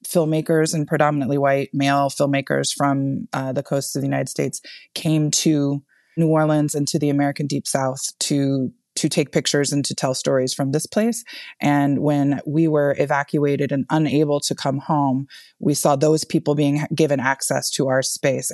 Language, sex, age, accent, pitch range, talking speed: English, female, 20-39, American, 135-150 Hz, 180 wpm